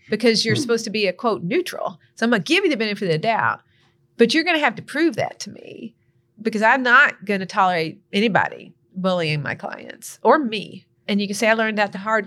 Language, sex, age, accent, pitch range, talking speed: English, female, 40-59, American, 185-230 Hz, 245 wpm